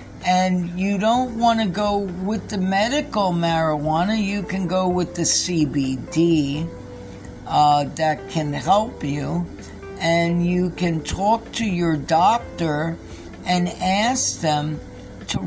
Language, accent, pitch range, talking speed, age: English, American, 150-185 Hz, 125 wpm, 50-69